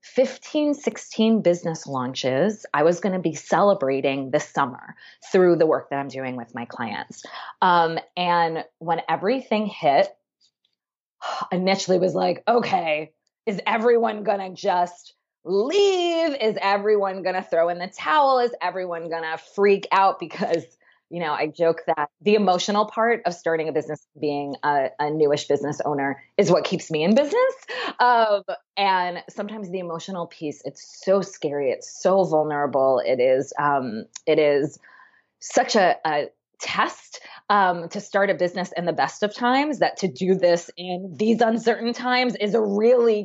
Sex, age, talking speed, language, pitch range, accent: female, 20-39, 160 wpm, English, 165-220 Hz, American